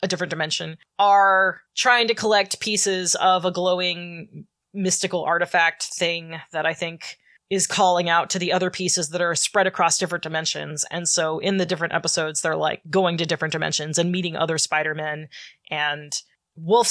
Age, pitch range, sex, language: 20-39, 160-195 Hz, female, English